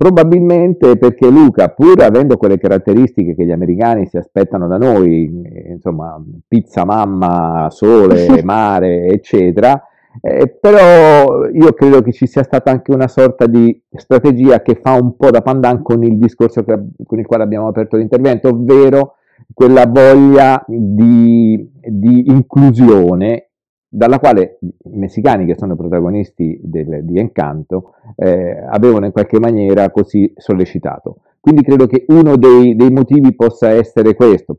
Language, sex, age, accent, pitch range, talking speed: Italian, male, 50-69, native, 100-130 Hz, 140 wpm